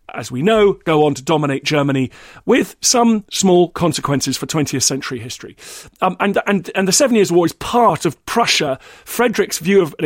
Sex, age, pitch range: male, 40-59, 150-205 Hz